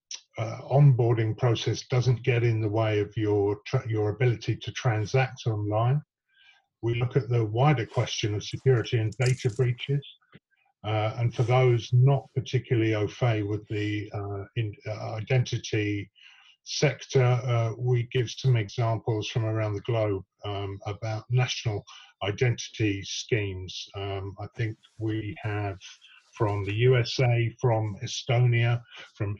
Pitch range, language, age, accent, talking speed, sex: 105-125 Hz, English, 50-69, British, 135 wpm, male